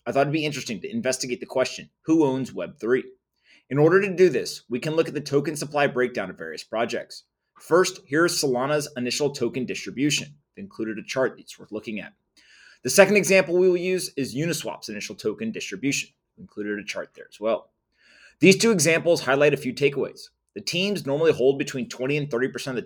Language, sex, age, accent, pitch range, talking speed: English, male, 30-49, American, 125-170 Hz, 195 wpm